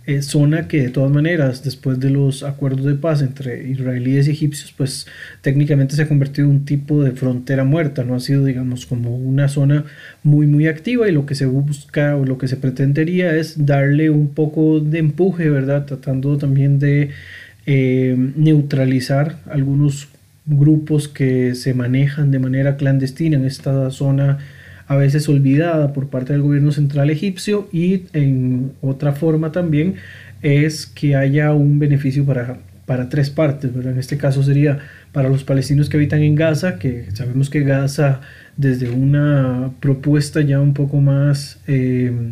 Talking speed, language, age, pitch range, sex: 160 wpm, Spanish, 30-49, 135-150 Hz, male